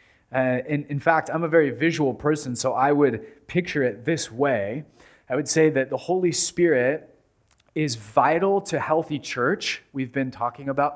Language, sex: English, male